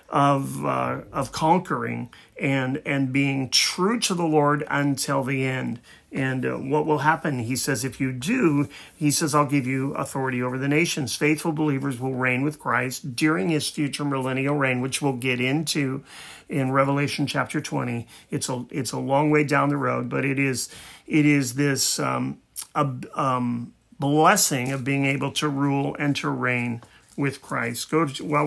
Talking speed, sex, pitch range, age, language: 175 wpm, male, 130-150 Hz, 40-59, English